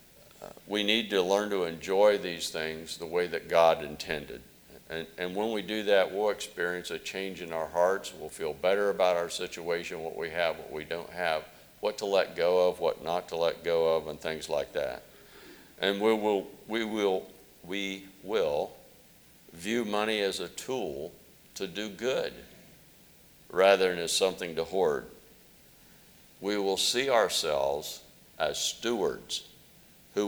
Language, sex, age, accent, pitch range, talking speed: English, male, 50-69, American, 85-105 Hz, 165 wpm